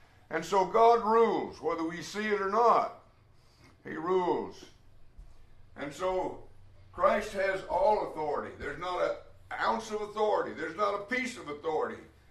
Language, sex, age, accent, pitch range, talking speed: English, male, 60-79, American, 160-225 Hz, 145 wpm